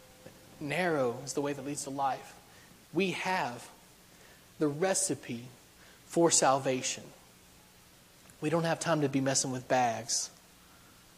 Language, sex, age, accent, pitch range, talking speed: English, male, 30-49, American, 135-160 Hz, 125 wpm